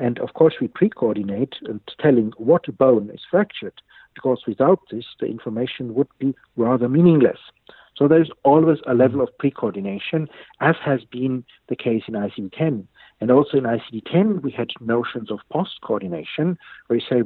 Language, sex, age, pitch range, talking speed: English, male, 60-79, 110-130 Hz, 160 wpm